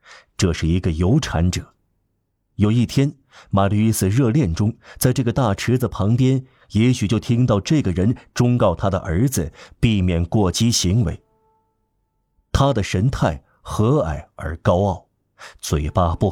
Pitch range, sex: 90-120 Hz, male